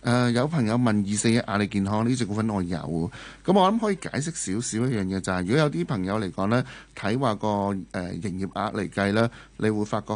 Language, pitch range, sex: Chinese, 100-130 Hz, male